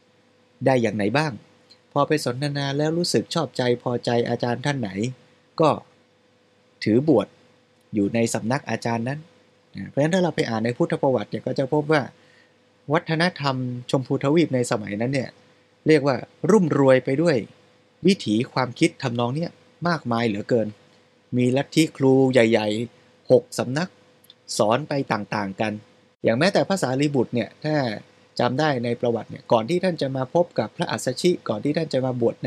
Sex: male